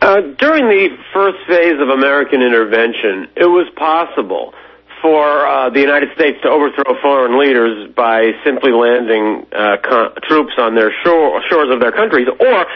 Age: 50-69